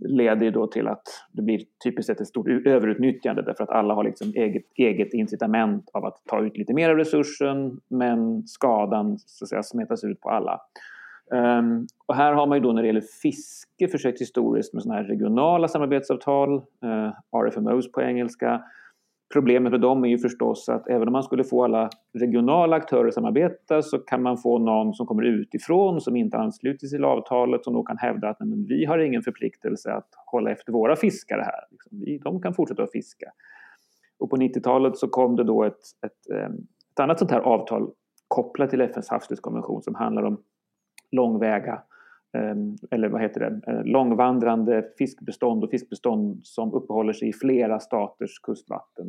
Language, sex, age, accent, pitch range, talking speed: Swedish, male, 30-49, native, 120-155 Hz, 180 wpm